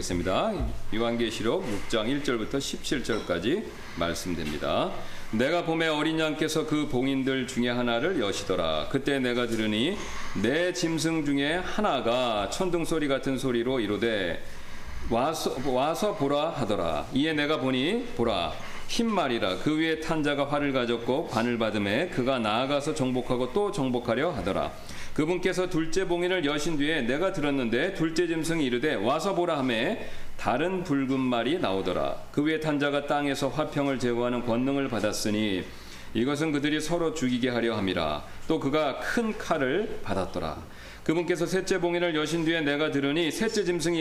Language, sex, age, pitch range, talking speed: English, male, 40-59, 125-165 Hz, 130 wpm